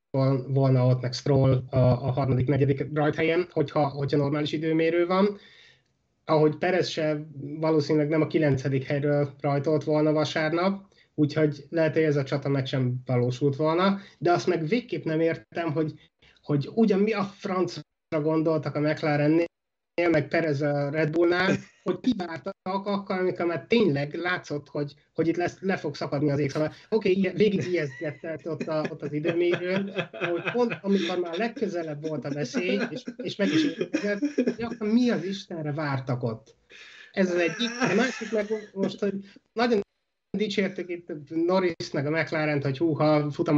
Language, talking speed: Hungarian, 160 wpm